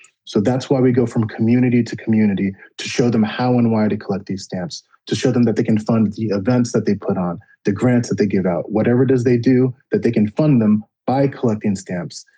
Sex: male